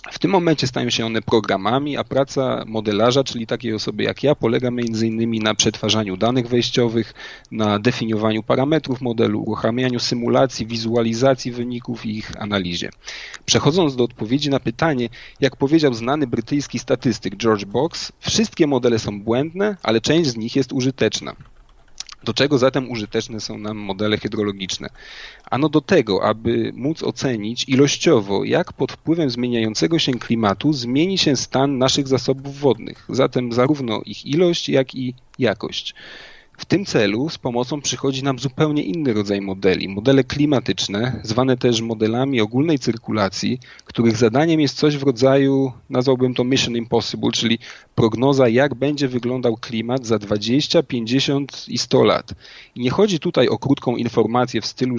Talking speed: 150 wpm